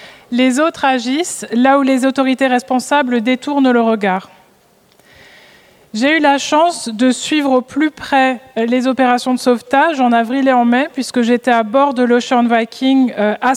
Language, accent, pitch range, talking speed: French, French, 240-275 Hz, 165 wpm